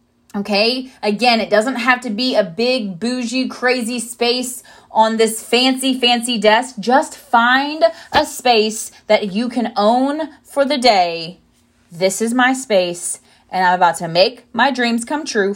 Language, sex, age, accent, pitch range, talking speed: English, female, 20-39, American, 215-270 Hz, 160 wpm